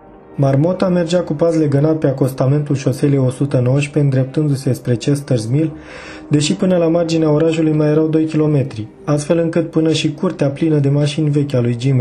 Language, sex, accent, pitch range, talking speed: Romanian, male, native, 130-160 Hz, 170 wpm